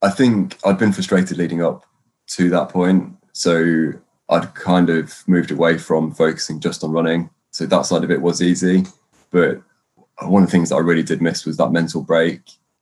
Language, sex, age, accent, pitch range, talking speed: English, male, 20-39, British, 80-90 Hz, 195 wpm